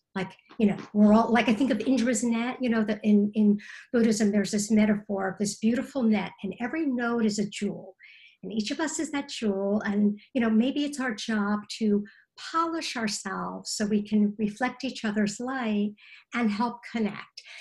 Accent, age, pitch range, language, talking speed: American, 50-69, 205-265 Hz, English, 195 wpm